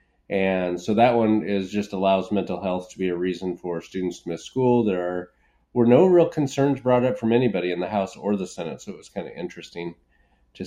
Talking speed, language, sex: 225 wpm, English, male